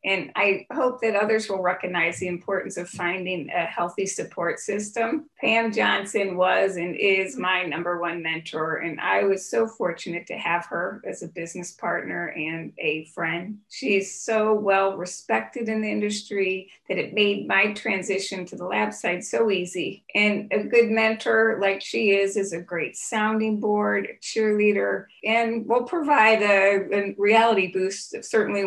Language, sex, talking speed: English, female, 160 wpm